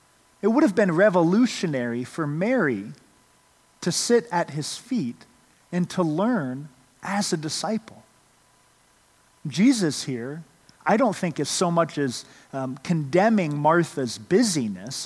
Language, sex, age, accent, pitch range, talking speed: English, male, 40-59, American, 145-200 Hz, 125 wpm